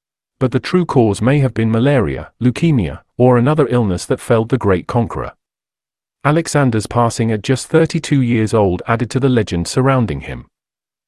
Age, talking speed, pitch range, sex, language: 40-59, 160 wpm, 105-135 Hz, male, English